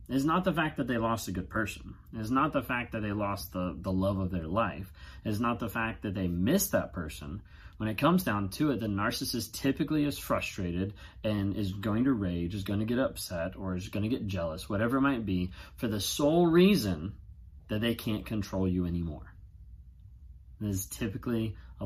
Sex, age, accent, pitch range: male, 30-49, American, 95-135 Hz